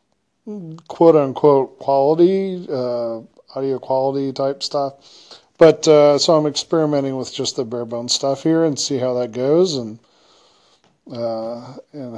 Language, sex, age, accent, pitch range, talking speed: English, male, 40-59, American, 125-150 Hz, 130 wpm